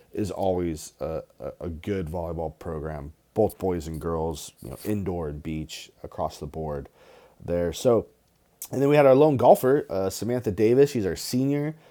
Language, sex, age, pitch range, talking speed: English, male, 30-49, 95-120 Hz, 170 wpm